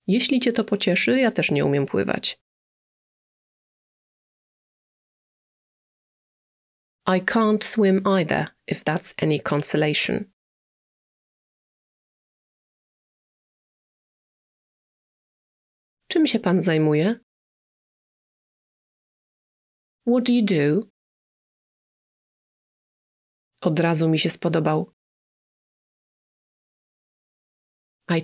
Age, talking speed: 30-49, 65 wpm